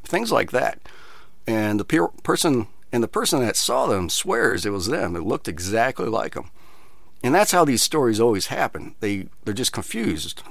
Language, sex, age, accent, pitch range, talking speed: English, male, 50-69, American, 95-120 Hz, 185 wpm